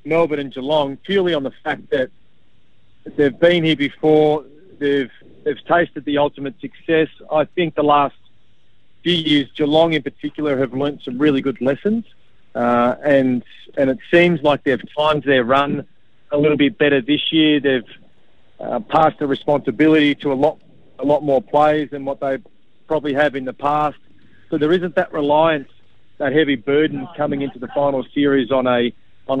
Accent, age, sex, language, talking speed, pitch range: Australian, 40-59, male, English, 175 wpm, 130-150 Hz